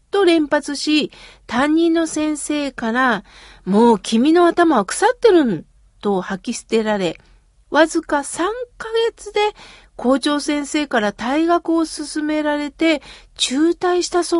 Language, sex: Japanese, female